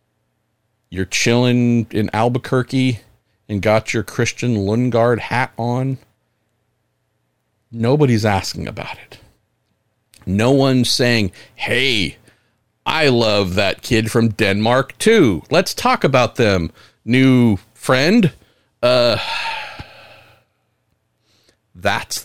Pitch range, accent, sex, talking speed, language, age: 110-135 Hz, American, male, 90 wpm, English, 50-69